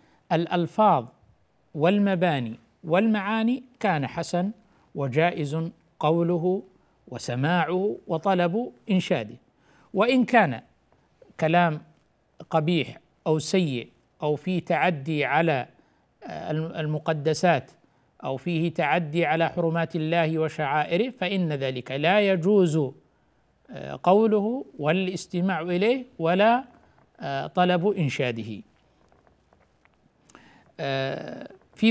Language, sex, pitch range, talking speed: Arabic, male, 160-205 Hz, 75 wpm